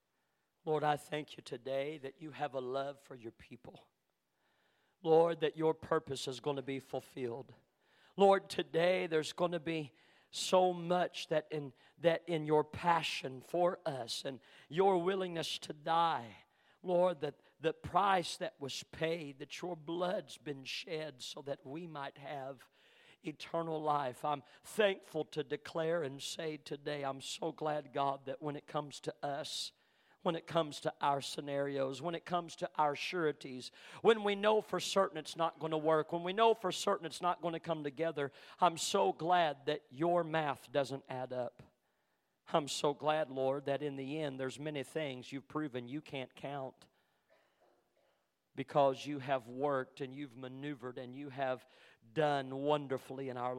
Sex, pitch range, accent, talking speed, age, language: male, 135-165 Hz, American, 170 wpm, 50-69, English